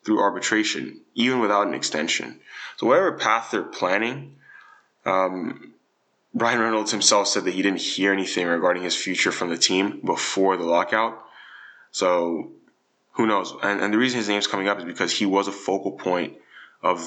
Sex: male